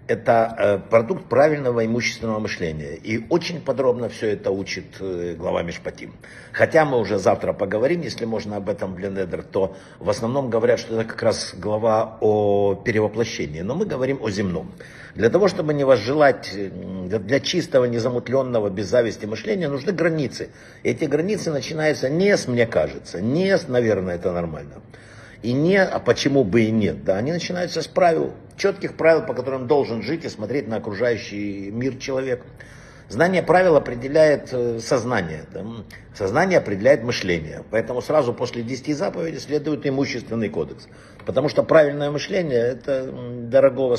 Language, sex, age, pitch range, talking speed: Russian, male, 60-79, 110-150 Hz, 150 wpm